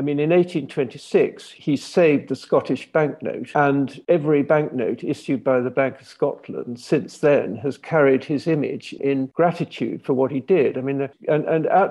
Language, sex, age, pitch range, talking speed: English, male, 50-69, 130-150 Hz, 175 wpm